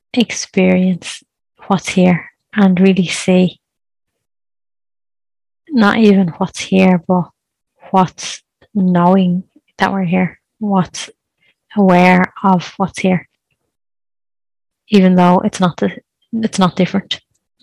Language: English